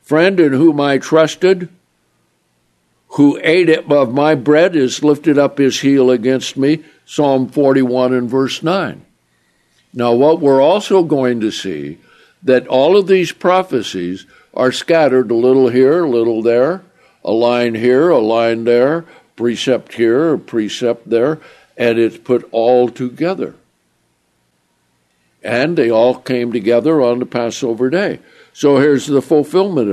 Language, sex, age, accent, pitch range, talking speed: English, male, 60-79, American, 120-155 Hz, 145 wpm